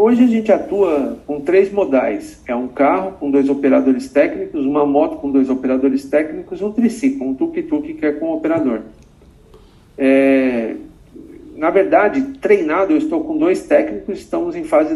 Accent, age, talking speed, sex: Brazilian, 50-69, 160 wpm, male